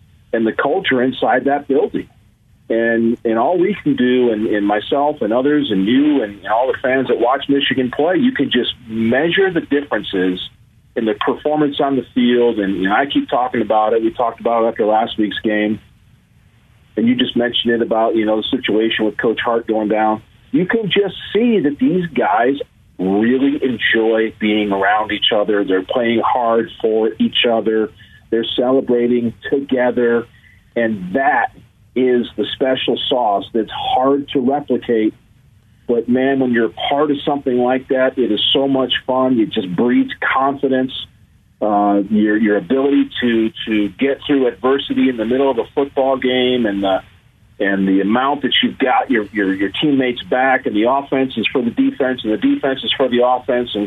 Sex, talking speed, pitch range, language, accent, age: male, 185 wpm, 110-135 Hz, English, American, 40-59